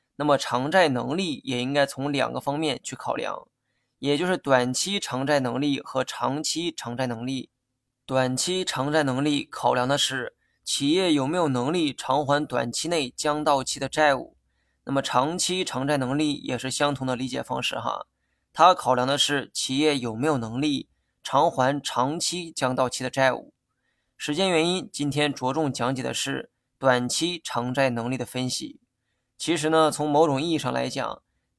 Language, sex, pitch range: Chinese, male, 130-155 Hz